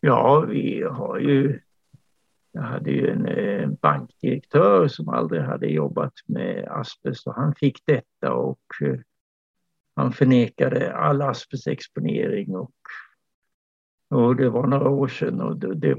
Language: Swedish